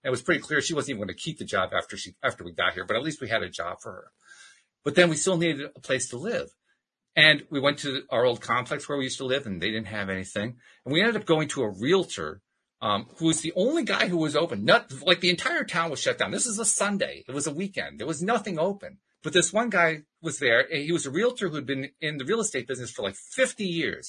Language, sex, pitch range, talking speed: English, male, 130-190 Hz, 280 wpm